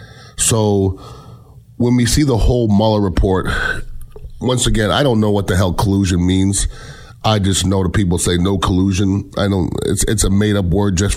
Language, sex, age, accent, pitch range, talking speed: English, male, 30-49, American, 90-110 Hz, 185 wpm